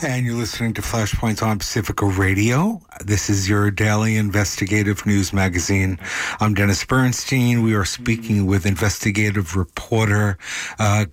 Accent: American